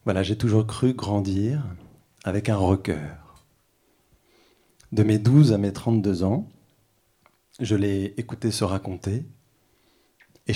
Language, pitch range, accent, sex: French, 95-115 Hz, French, male